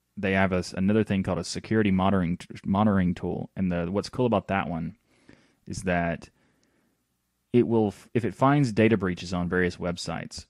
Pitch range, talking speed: 90-115 Hz, 175 wpm